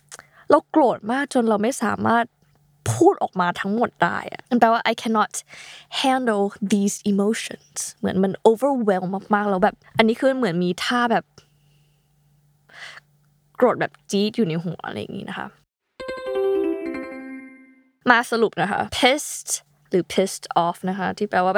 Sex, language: female, Thai